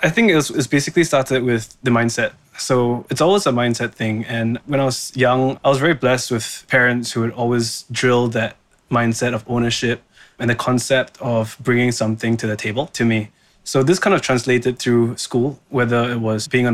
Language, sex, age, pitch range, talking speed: English, male, 20-39, 110-130 Hz, 210 wpm